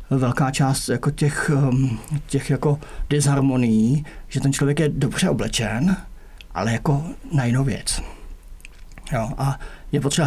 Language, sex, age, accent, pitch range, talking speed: English, male, 50-69, Czech, 120-145 Hz, 115 wpm